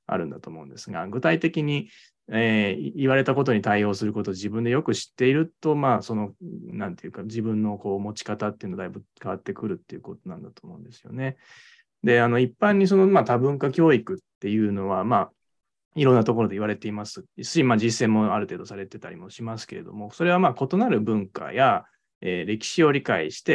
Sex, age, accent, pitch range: male, 20-39, native, 105-160 Hz